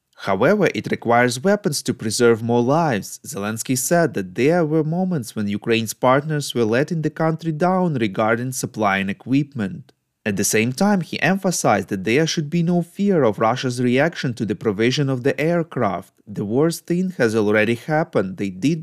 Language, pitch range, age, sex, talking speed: English, 110-165 Hz, 30-49, male, 170 wpm